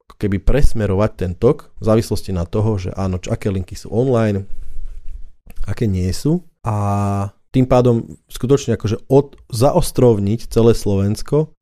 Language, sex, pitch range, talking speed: Slovak, male, 95-110 Hz, 135 wpm